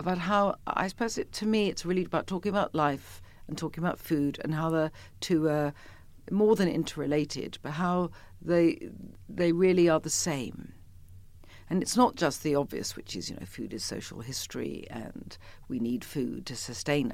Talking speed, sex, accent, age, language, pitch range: 185 wpm, female, British, 50-69, English, 100-160 Hz